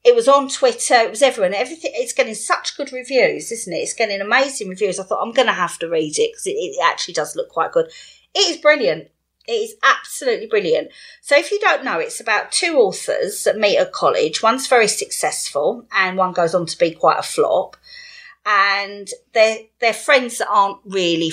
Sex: female